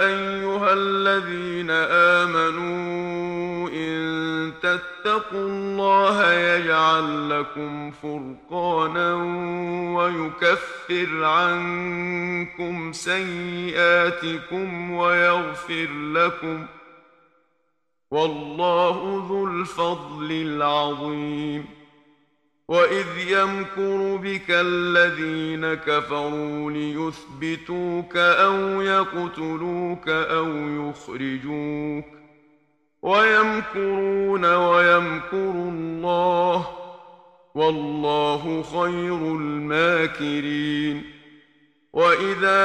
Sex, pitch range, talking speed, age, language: male, 160-180 Hz, 50 wpm, 50-69, Arabic